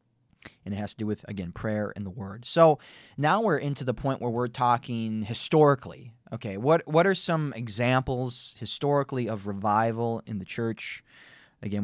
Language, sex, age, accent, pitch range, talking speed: English, male, 20-39, American, 105-140 Hz, 170 wpm